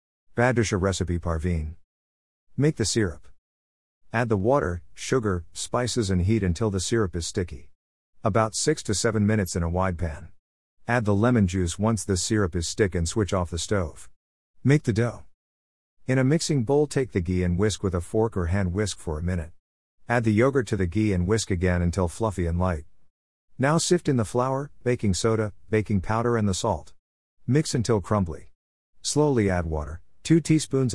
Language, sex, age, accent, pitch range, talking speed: English, male, 50-69, American, 85-115 Hz, 180 wpm